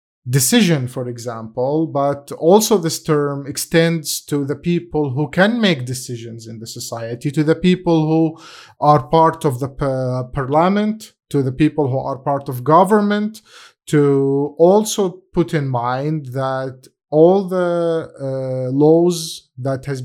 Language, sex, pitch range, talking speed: Arabic, male, 140-180 Hz, 145 wpm